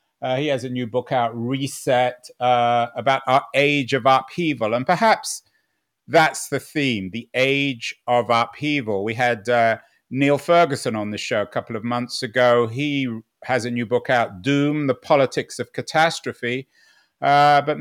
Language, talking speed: English, 165 wpm